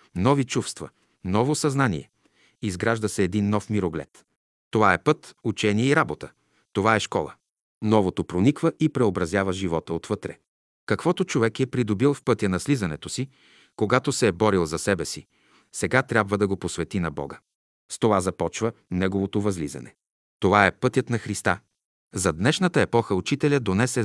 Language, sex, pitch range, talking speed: Bulgarian, male, 90-130 Hz, 155 wpm